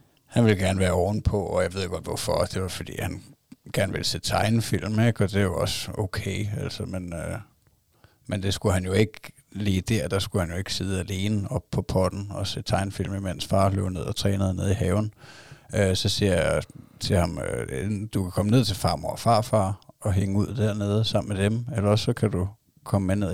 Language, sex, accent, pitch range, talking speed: Danish, male, native, 95-105 Hz, 220 wpm